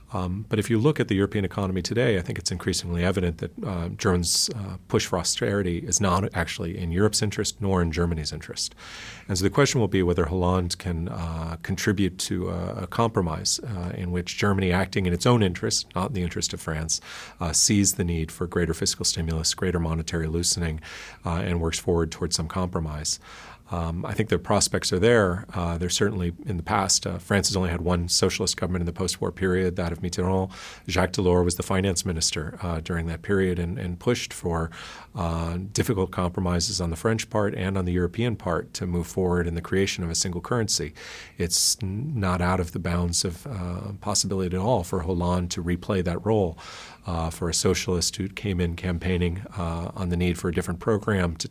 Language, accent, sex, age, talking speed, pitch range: English, American, male, 40-59, 205 wpm, 85-100 Hz